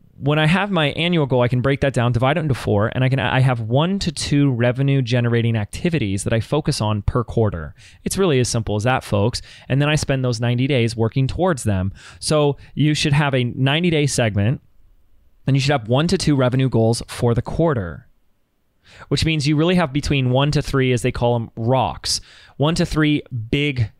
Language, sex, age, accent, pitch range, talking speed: English, male, 20-39, American, 115-145 Hz, 215 wpm